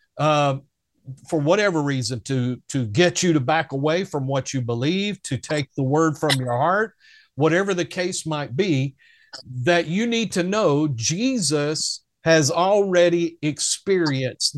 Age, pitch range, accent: 50-69, 150-190 Hz, American